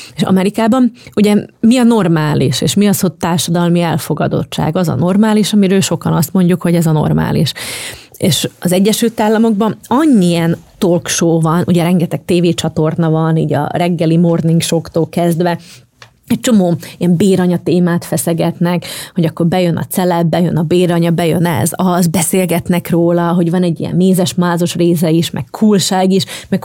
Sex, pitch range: female, 165-200 Hz